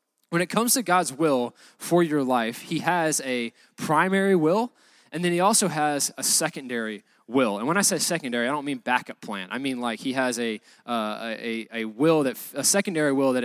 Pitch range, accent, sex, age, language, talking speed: 125-170 Hz, American, male, 20-39, English, 210 wpm